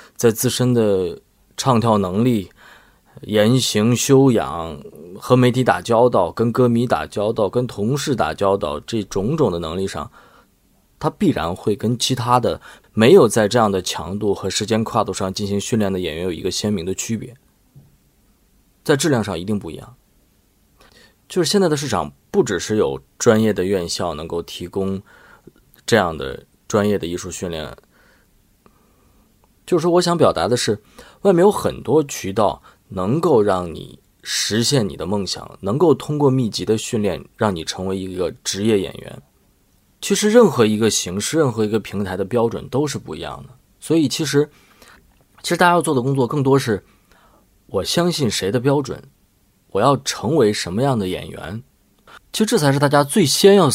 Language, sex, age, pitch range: Chinese, male, 20-39, 95-135 Hz